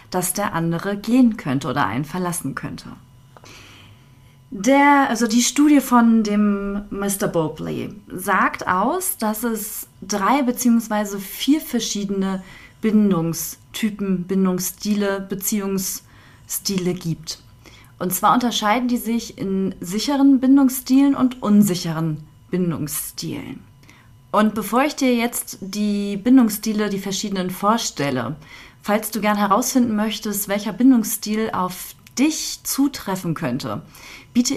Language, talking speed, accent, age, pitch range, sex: German, 110 wpm, German, 30-49, 170-225 Hz, female